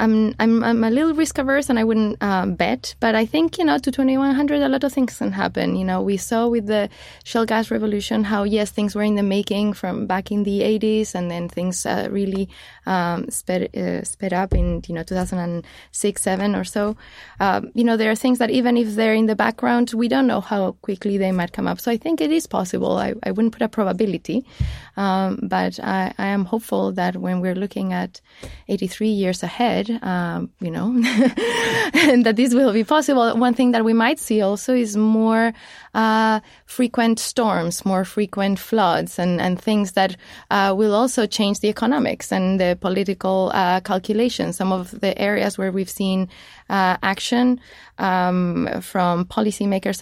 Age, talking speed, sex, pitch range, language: 20-39, 195 wpm, female, 185-230 Hz, English